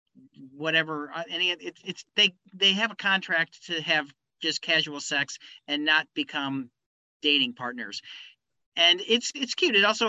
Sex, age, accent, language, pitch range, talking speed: male, 40-59, American, English, 150-195 Hz, 150 wpm